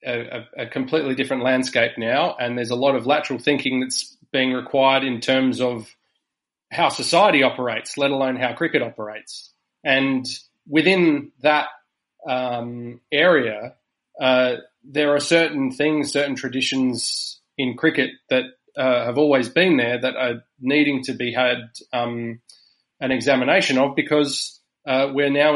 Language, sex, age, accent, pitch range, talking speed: English, male, 20-39, Australian, 120-135 Hz, 145 wpm